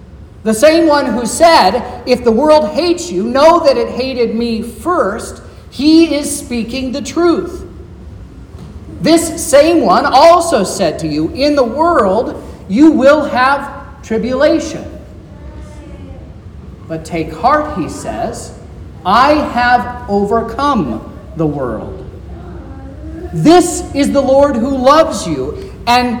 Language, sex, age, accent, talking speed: English, male, 40-59, American, 120 wpm